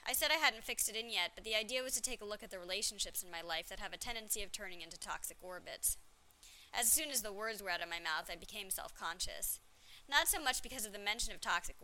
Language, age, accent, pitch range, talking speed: English, 20-39, American, 185-240 Hz, 270 wpm